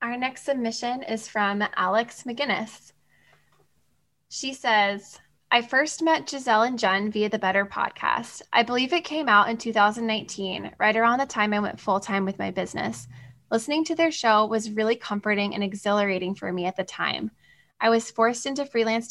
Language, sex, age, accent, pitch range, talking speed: English, female, 10-29, American, 200-230 Hz, 175 wpm